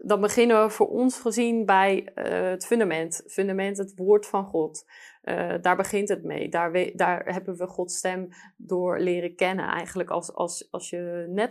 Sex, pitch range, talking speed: female, 175-195 Hz, 190 wpm